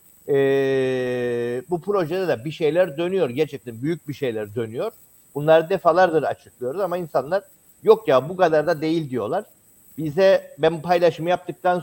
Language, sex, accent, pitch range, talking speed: Turkish, male, native, 130-180 Hz, 145 wpm